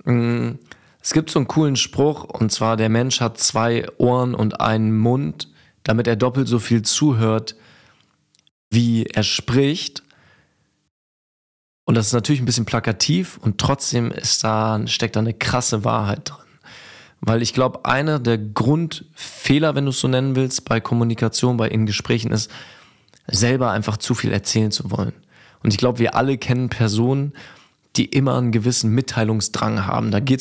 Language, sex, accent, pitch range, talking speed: German, male, German, 110-135 Hz, 160 wpm